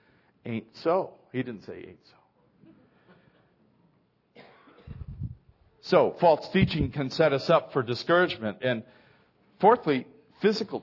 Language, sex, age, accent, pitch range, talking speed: English, male, 50-69, American, 120-145 Hz, 105 wpm